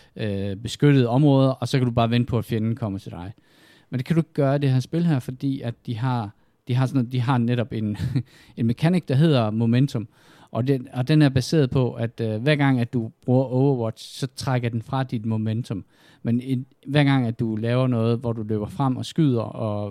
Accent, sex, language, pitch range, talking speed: native, male, Danish, 110-140 Hz, 230 wpm